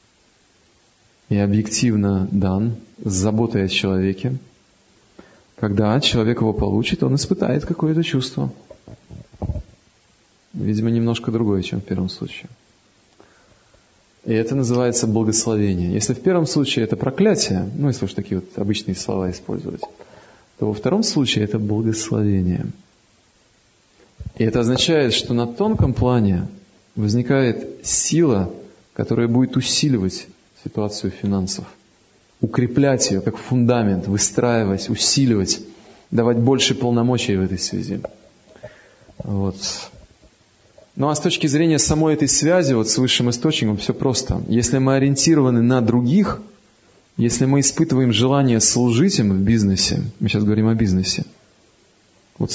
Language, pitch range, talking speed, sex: Russian, 105-130 Hz, 120 wpm, male